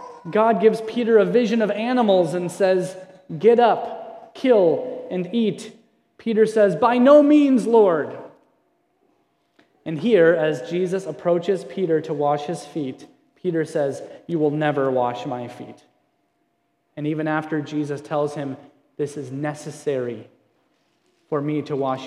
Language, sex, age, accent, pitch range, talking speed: English, male, 20-39, American, 150-215 Hz, 140 wpm